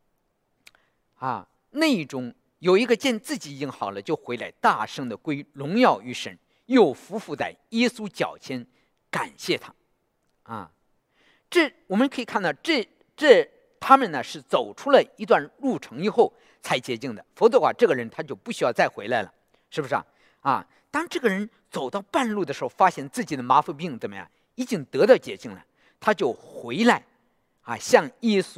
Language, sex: English, male